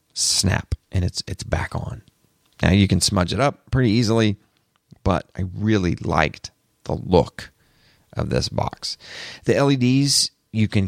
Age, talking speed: 30-49, 150 wpm